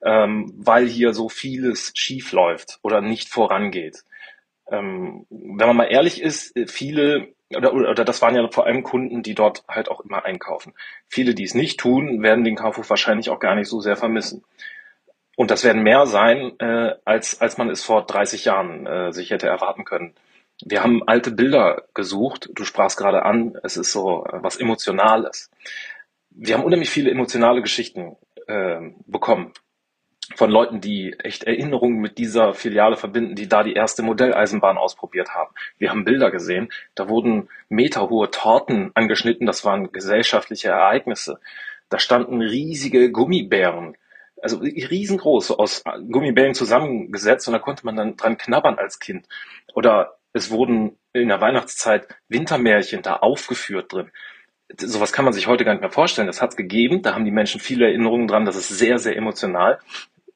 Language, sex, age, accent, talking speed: German, male, 30-49, German, 170 wpm